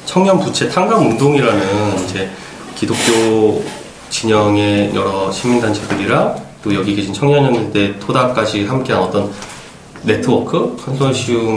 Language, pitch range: Korean, 105-150 Hz